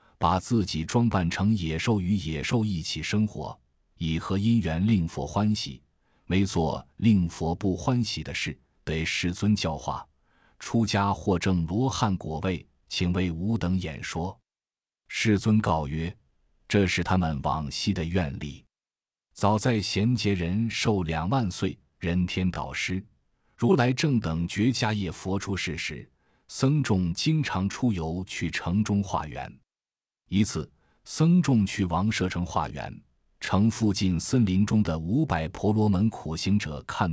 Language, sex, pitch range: Chinese, male, 80-105 Hz